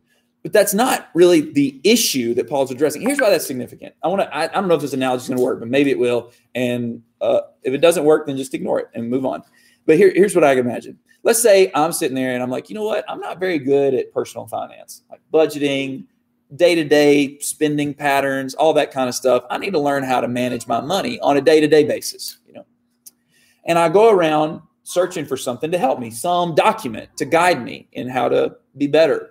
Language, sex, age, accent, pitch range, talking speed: English, male, 30-49, American, 130-190 Hz, 230 wpm